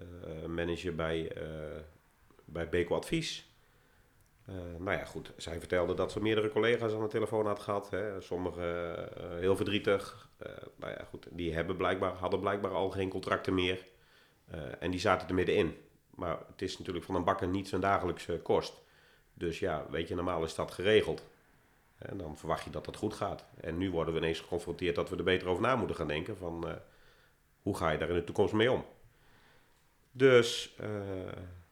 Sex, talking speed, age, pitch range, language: male, 190 wpm, 40-59, 80-100 Hz, Dutch